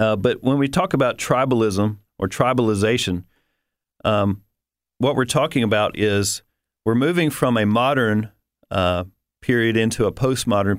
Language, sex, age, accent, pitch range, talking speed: English, male, 40-59, American, 100-125 Hz, 140 wpm